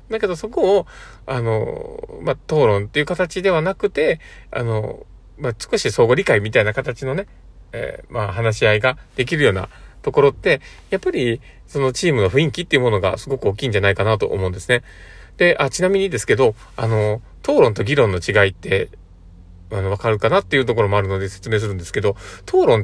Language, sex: Japanese, male